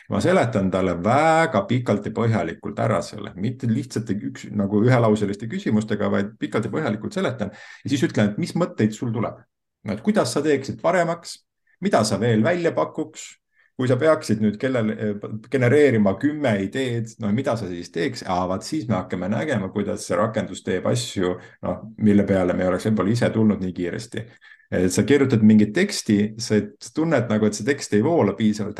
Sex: male